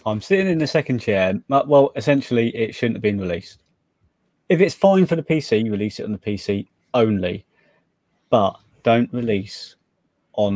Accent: British